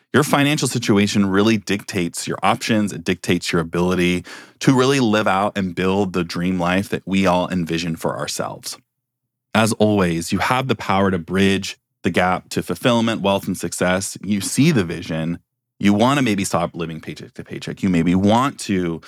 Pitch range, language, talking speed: 85-110 Hz, English, 180 wpm